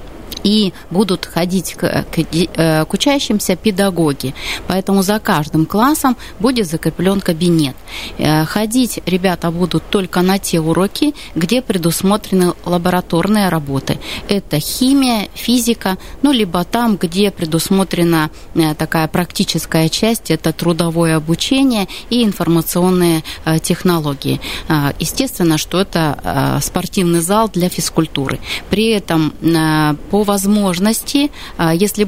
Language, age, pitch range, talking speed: Russian, 20-39, 160-205 Hz, 100 wpm